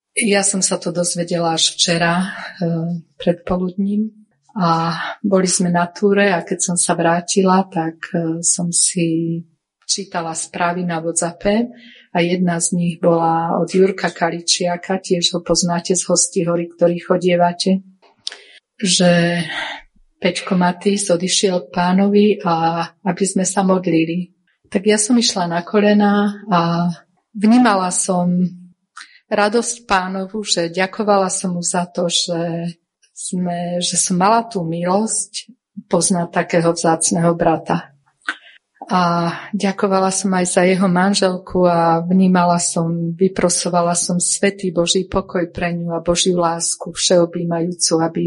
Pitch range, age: 170-195 Hz, 40-59